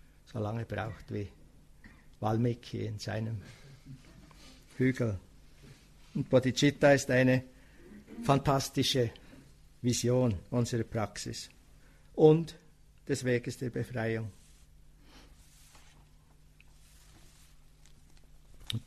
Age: 60-79